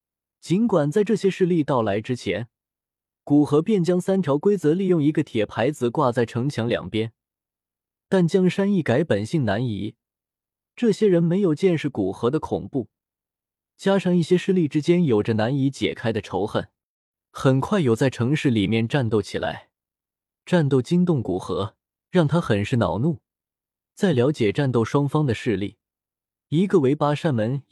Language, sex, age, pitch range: Chinese, male, 20-39, 110-160 Hz